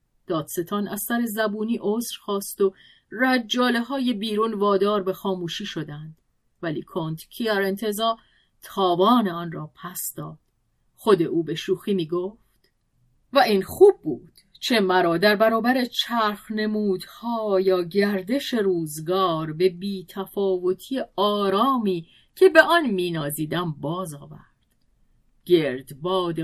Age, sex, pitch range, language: 40-59, female, 165-230 Hz, Persian